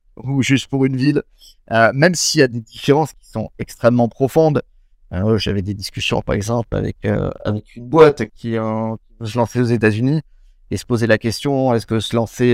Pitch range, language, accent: 105-125 Hz, French, French